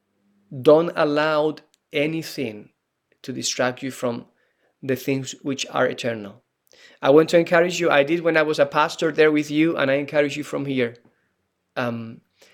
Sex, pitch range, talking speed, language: male, 130-150 Hz, 165 wpm, English